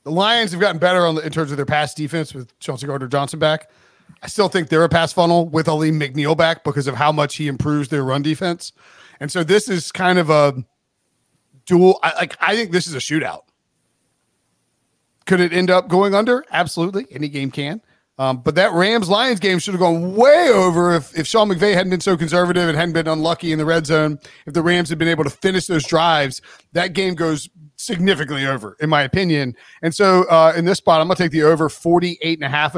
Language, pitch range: English, 145-180 Hz